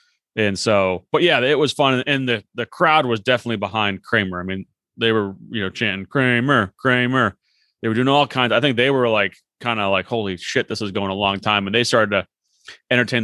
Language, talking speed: English, 225 wpm